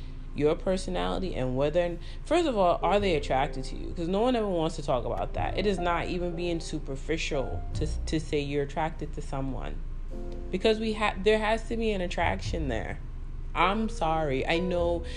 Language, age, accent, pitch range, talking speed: English, 30-49, American, 125-185 Hz, 190 wpm